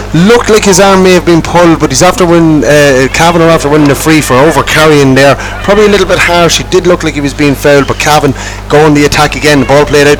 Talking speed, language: 265 wpm, English